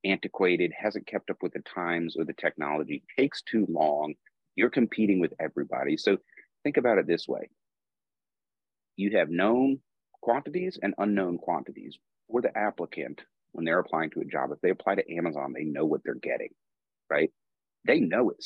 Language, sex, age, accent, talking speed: English, male, 40-59, American, 170 wpm